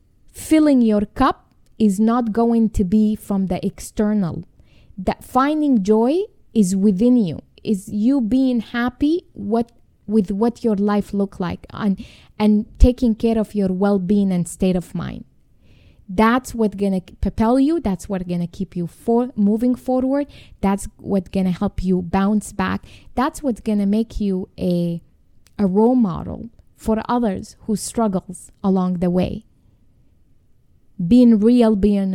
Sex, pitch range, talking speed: female, 190-235 Hz, 155 wpm